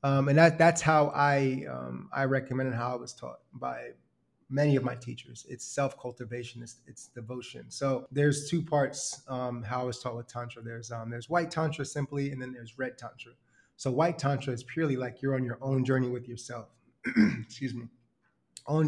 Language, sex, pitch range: English, male, 120-135 Hz